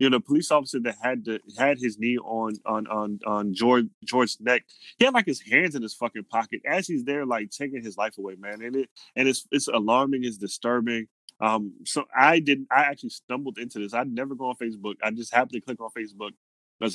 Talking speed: 235 wpm